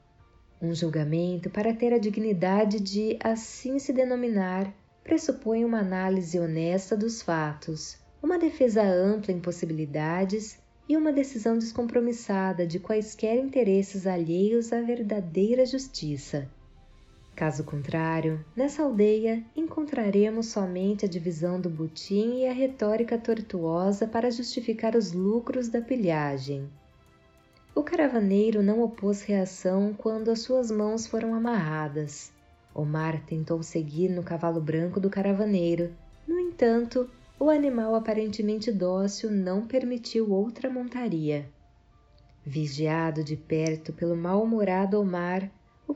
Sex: female